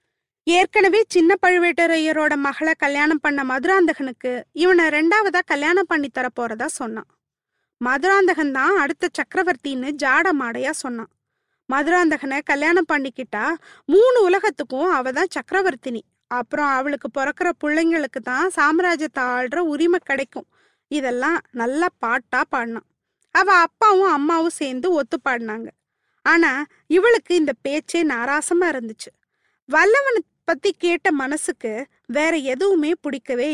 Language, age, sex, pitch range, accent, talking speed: Tamil, 20-39, female, 275-360 Hz, native, 105 wpm